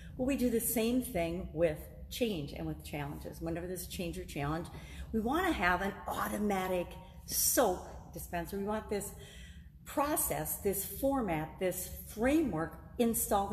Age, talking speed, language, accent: 50-69, 150 wpm, English, American